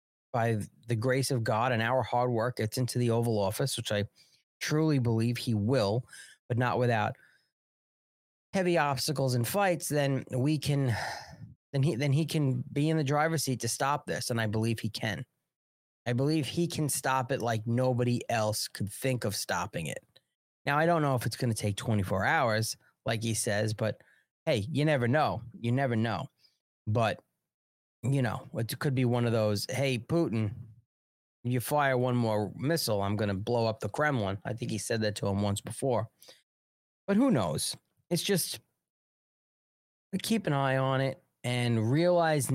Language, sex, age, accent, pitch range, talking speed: English, male, 30-49, American, 110-135 Hz, 180 wpm